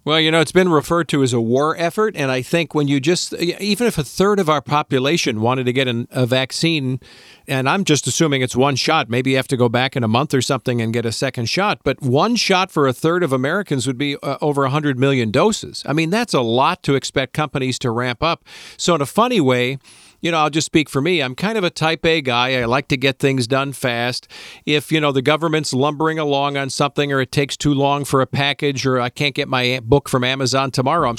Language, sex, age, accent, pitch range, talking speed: English, male, 50-69, American, 130-160 Hz, 250 wpm